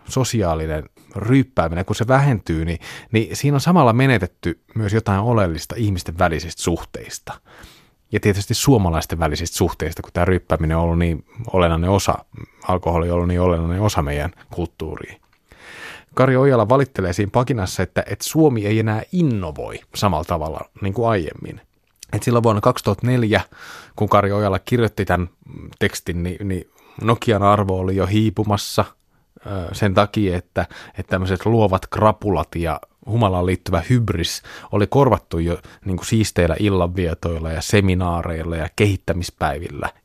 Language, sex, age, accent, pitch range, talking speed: Finnish, male, 30-49, native, 85-110 Hz, 140 wpm